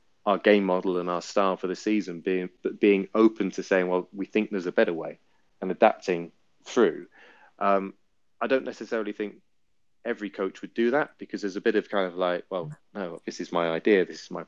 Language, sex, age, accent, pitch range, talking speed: English, male, 30-49, British, 90-105 Hz, 210 wpm